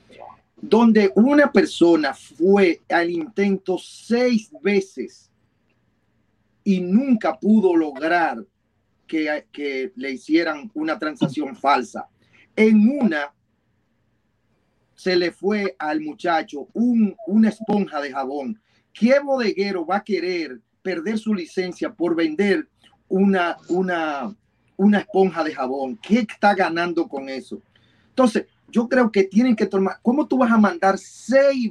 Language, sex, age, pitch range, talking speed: Spanish, male, 40-59, 165-225 Hz, 120 wpm